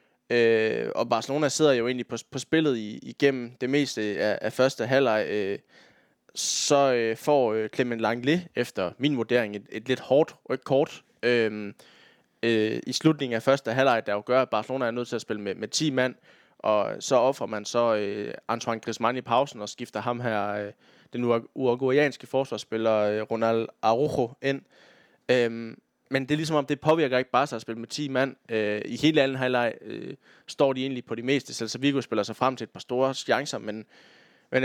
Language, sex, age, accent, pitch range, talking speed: Danish, male, 20-39, native, 115-135 Hz, 205 wpm